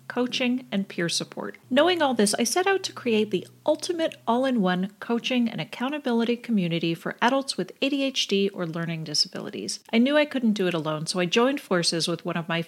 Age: 40-59